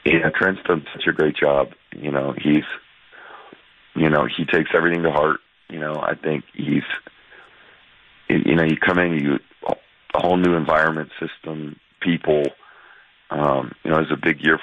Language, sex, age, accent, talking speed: English, male, 40-59, American, 170 wpm